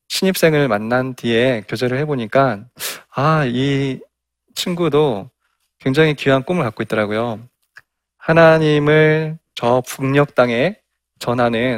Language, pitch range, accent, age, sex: Korean, 115-160 Hz, native, 20-39, male